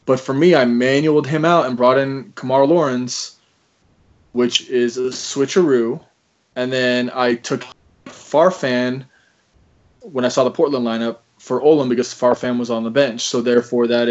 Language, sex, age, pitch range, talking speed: English, male, 20-39, 120-135 Hz, 160 wpm